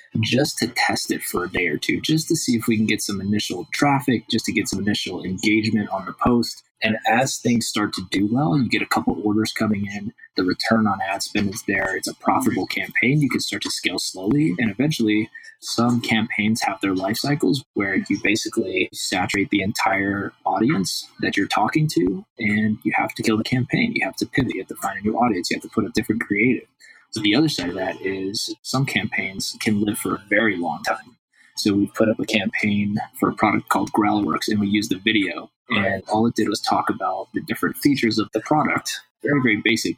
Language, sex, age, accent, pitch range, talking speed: English, male, 20-39, American, 105-130 Hz, 230 wpm